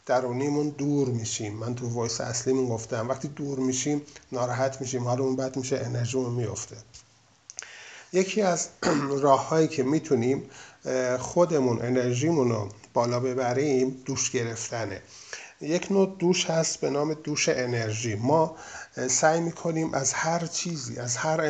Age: 50-69